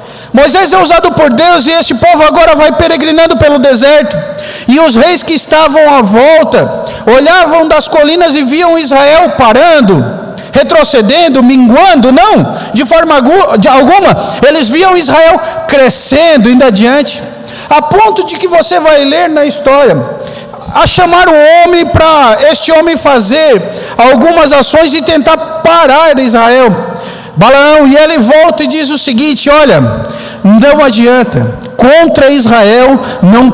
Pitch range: 245-315 Hz